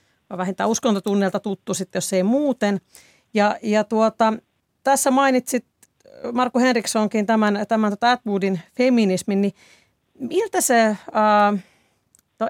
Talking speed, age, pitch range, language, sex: 120 wpm, 40-59, 185-220 Hz, Finnish, female